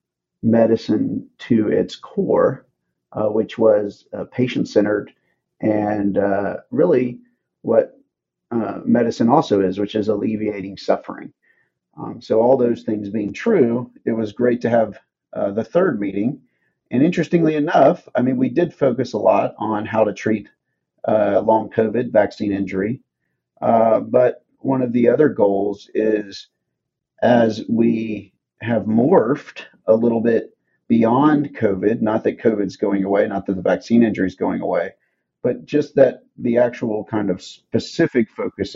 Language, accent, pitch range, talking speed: English, American, 100-115 Hz, 145 wpm